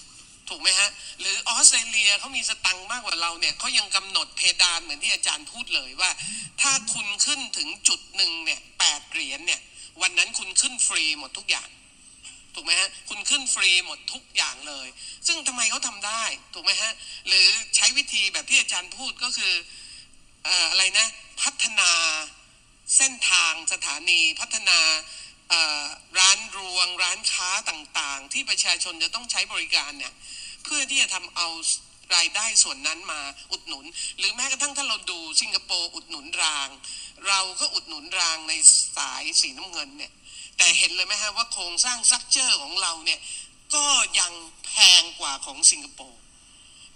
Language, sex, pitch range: Thai, male, 185-275 Hz